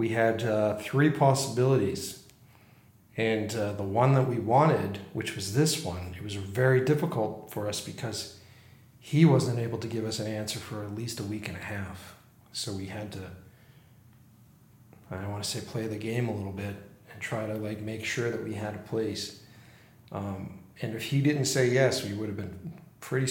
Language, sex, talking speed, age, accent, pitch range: English, male, 195 wpm, 40-59, American, 110-135 Hz